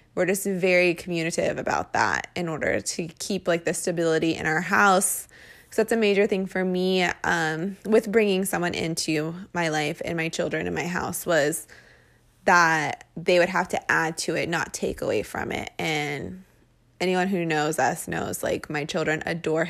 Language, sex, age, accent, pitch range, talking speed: English, female, 20-39, American, 165-195 Hz, 185 wpm